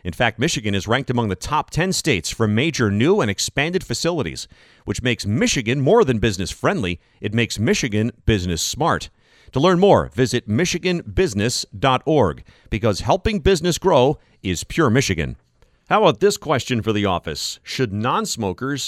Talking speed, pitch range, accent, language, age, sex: 155 wpm, 95-135 Hz, American, English, 40-59, male